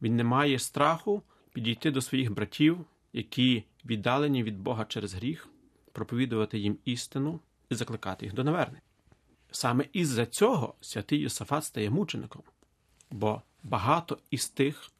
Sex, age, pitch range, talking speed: male, 40-59, 115-145 Hz, 130 wpm